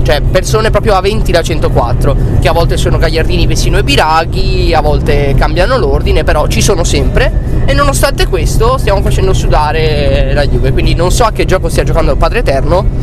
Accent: native